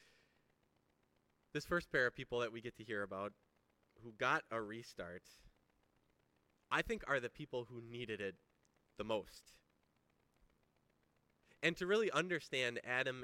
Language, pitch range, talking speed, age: English, 95-130 Hz, 135 wpm, 30-49